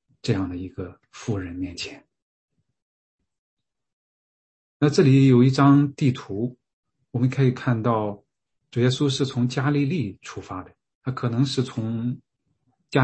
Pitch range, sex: 110-135 Hz, male